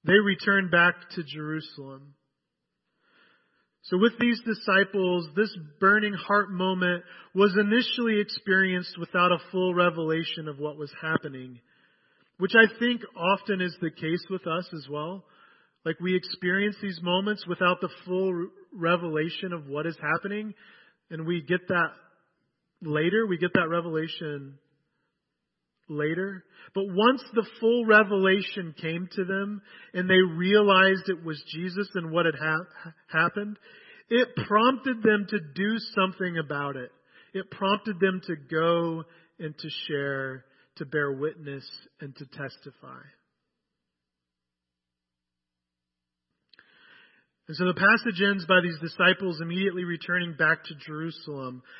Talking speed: 130 wpm